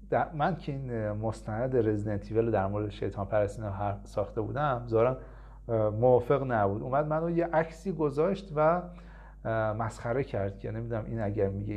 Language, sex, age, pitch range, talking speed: Persian, male, 40-59, 110-160 Hz, 145 wpm